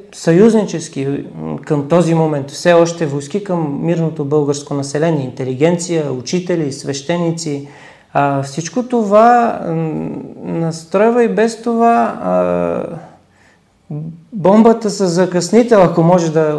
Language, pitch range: Bulgarian, 150-185 Hz